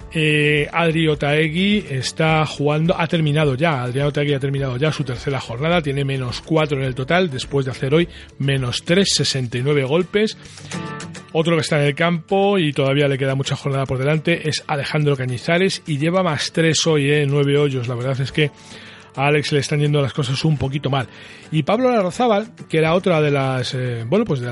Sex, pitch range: male, 135-170 Hz